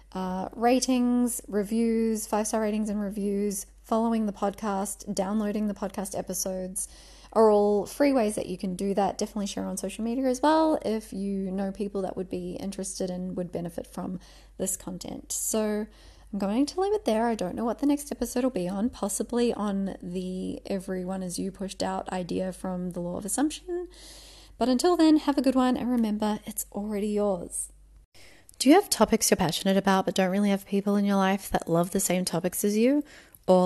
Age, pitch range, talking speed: 20-39, 190-245 Hz, 195 wpm